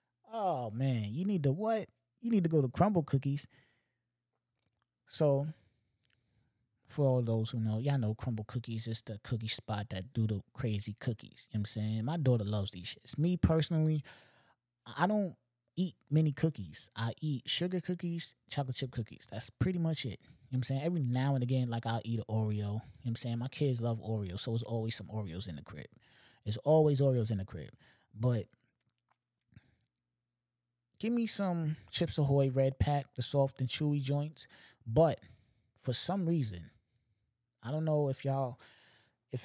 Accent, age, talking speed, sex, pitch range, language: American, 20-39, 185 wpm, male, 115-155 Hz, English